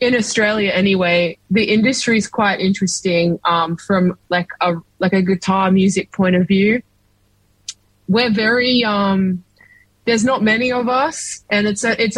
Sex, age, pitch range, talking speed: female, 20-39, 175-205 Hz, 155 wpm